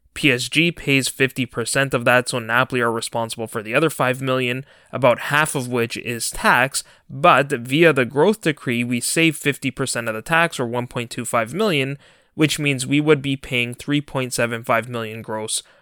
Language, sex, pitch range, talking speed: English, male, 120-150 Hz, 165 wpm